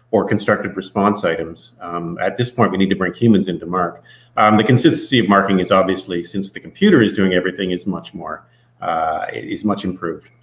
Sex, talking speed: male, 200 wpm